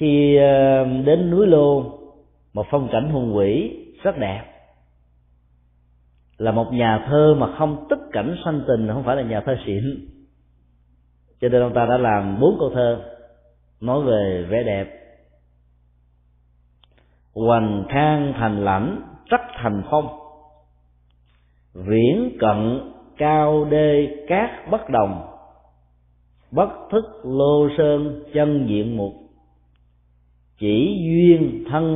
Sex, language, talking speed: male, Vietnamese, 120 wpm